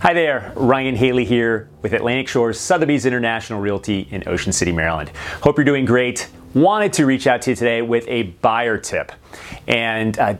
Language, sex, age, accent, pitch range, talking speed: English, male, 30-49, American, 100-140 Hz, 185 wpm